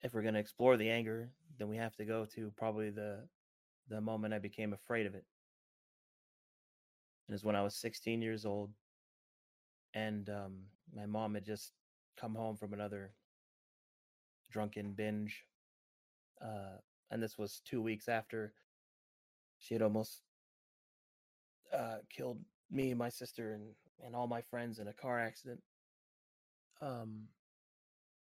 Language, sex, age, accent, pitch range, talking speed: English, male, 20-39, American, 105-115 Hz, 145 wpm